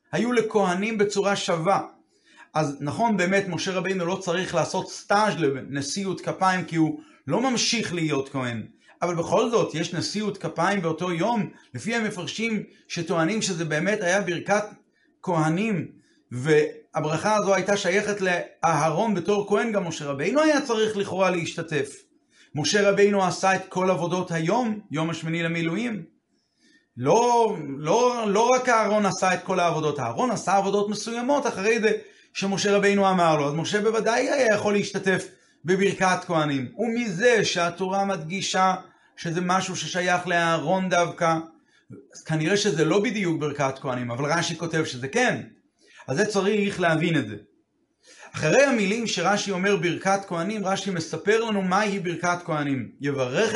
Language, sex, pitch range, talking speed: Hebrew, male, 165-210 Hz, 140 wpm